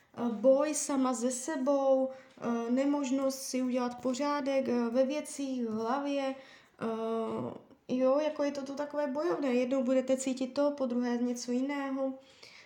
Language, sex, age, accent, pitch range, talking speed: Czech, female, 20-39, native, 240-280 Hz, 130 wpm